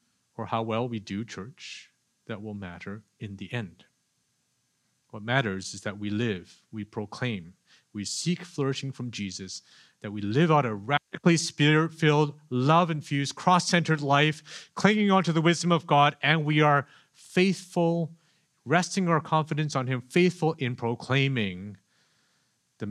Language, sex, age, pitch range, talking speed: English, male, 40-59, 100-145 Hz, 145 wpm